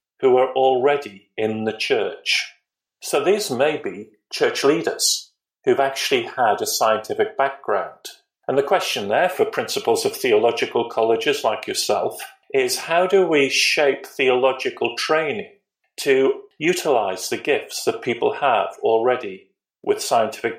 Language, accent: English, British